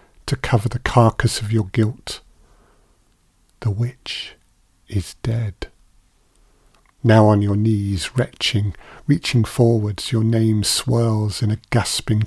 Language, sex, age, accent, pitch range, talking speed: English, male, 50-69, British, 105-120 Hz, 115 wpm